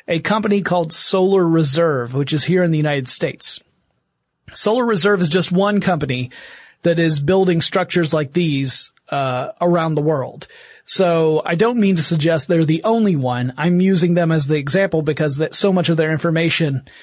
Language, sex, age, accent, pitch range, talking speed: English, male, 30-49, American, 155-190 Hz, 180 wpm